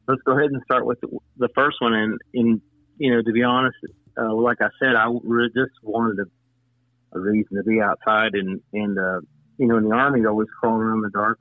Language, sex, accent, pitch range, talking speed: English, male, American, 105-120 Hz, 230 wpm